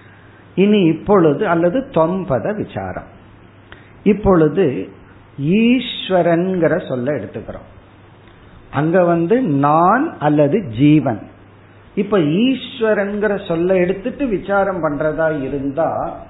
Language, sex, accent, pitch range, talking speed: Tamil, male, native, 115-185 Hz, 75 wpm